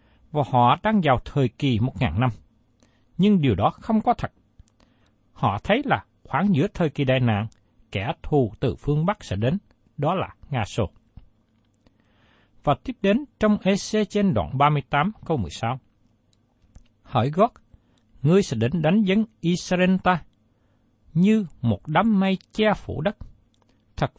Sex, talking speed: male, 155 wpm